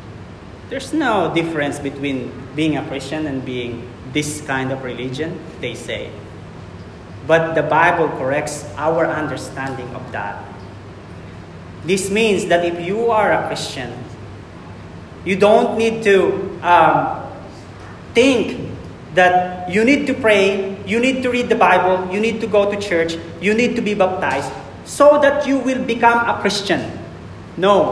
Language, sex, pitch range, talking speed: English, male, 130-205 Hz, 145 wpm